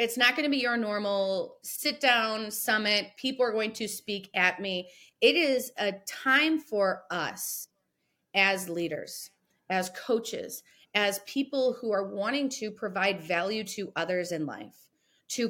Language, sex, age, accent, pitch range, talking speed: English, female, 30-49, American, 185-245 Hz, 155 wpm